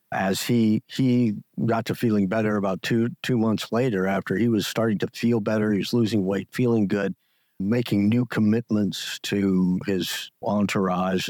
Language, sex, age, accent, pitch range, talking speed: English, male, 50-69, American, 90-110 Hz, 165 wpm